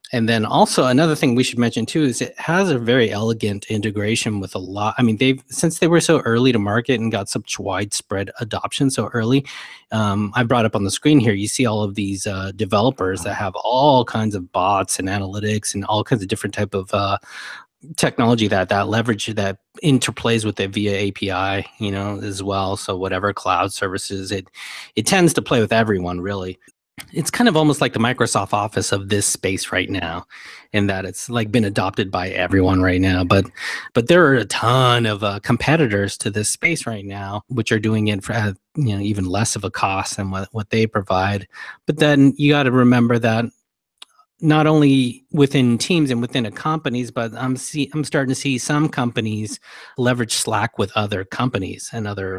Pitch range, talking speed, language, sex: 100-125 Hz, 205 wpm, English, male